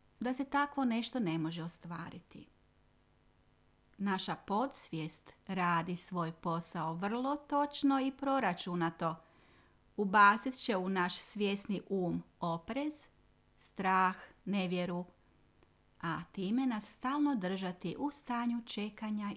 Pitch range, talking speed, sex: 170-215 Hz, 100 wpm, female